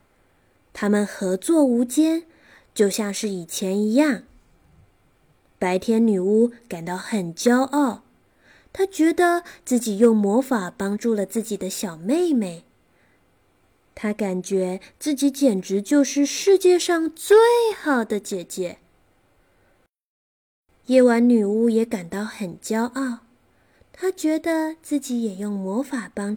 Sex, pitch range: female, 195-285 Hz